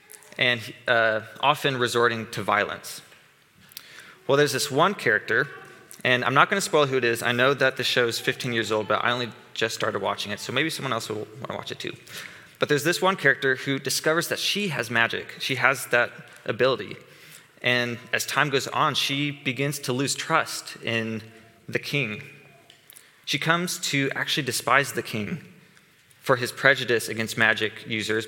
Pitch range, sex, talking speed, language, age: 115-145 Hz, male, 180 wpm, English, 20-39